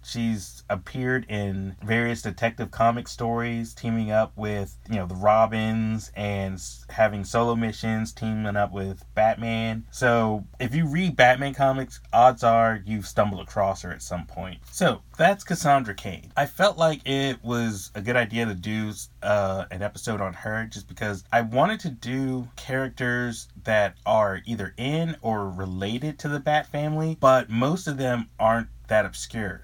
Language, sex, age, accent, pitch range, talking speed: English, male, 30-49, American, 100-125 Hz, 160 wpm